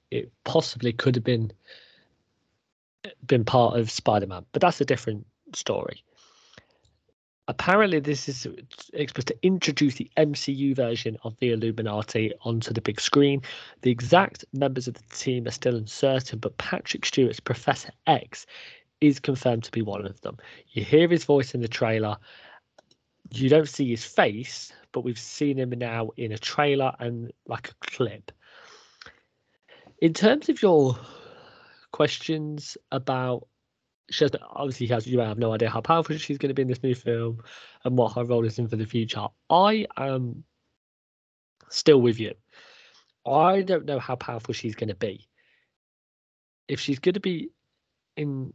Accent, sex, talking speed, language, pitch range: British, male, 155 wpm, English, 115-145 Hz